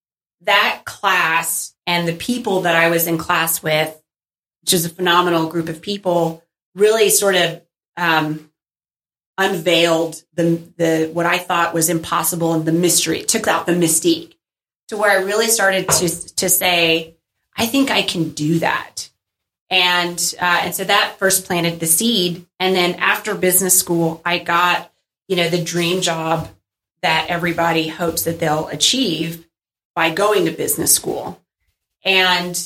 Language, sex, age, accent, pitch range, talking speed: English, female, 30-49, American, 165-185 Hz, 155 wpm